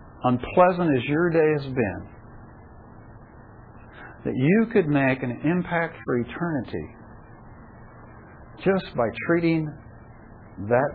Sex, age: male, 60-79